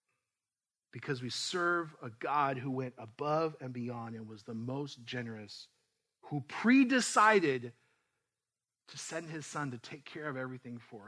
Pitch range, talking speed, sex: 125-155 Hz, 145 wpm, male